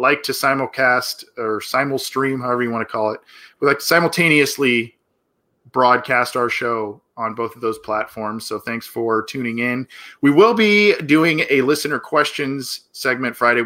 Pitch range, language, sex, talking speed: 105-130 Hz, English, male, 165 wpm